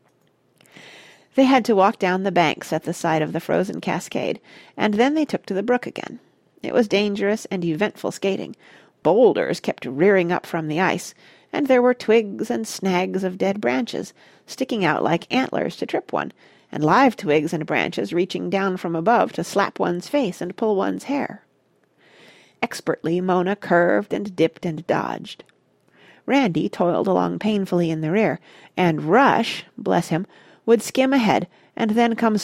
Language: English